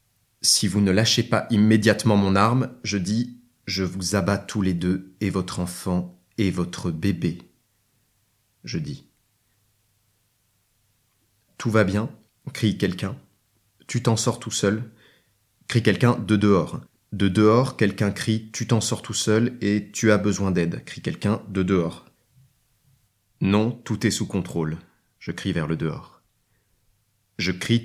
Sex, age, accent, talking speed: male, 30-49, French, 145 wpm